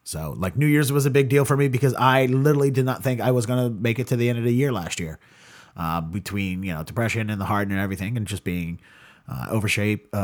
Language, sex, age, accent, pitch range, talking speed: English, male, 30-49, American, 100-130 Hz, 270 wpm